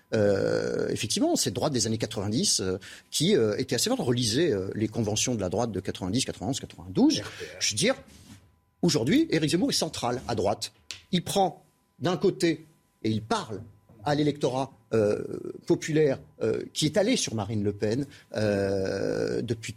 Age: 50-69